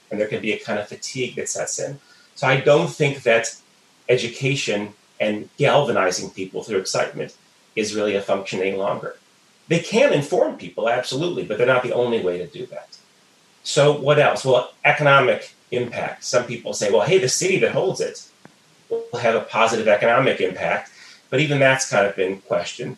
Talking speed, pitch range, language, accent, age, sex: 185 wpm, 105-160 Hz, English, American, 30-49, male